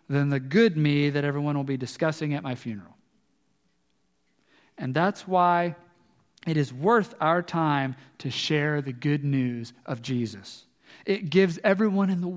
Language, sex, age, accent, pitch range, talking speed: English, male, 40-59, American, 140-190 Hz, 155 wpm